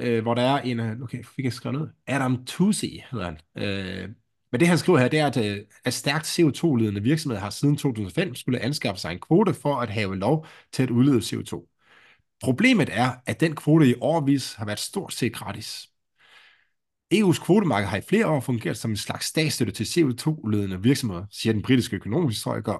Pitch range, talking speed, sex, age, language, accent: 110-145 Hz, 185 wpm, male, 30-49, English, Danish